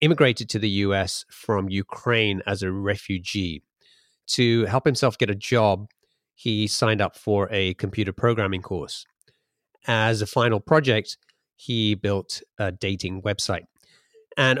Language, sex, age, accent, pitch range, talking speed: English, male, 30-49, British, 105-135 Hz, 135 wpm